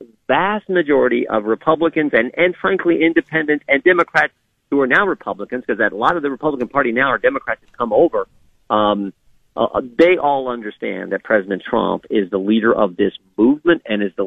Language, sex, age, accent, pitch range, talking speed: English, male, 40-59, American, 105-150 Hz, 190 wpm